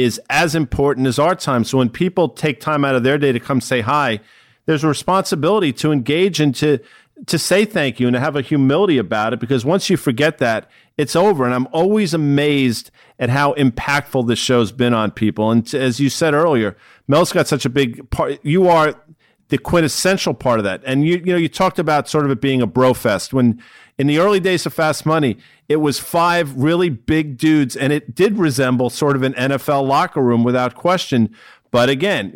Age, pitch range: 50-69, 125-160 Hz